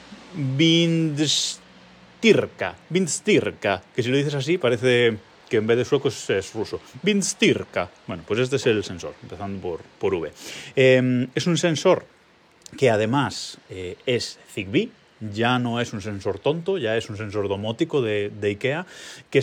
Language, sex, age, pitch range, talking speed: Spanish, male, 30-49, 105-135 Hz, 155 wpm